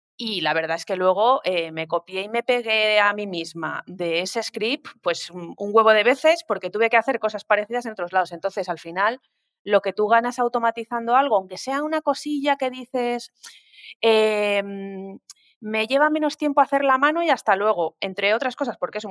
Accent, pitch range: Spanish, 180-245 Hz